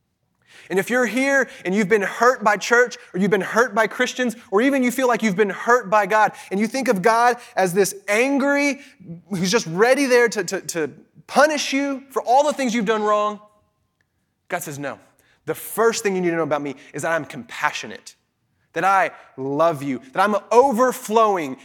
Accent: American